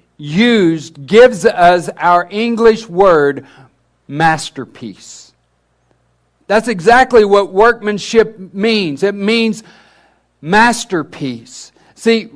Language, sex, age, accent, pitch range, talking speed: English, male, 60-79, American, 180-235 Hz, 80 wpm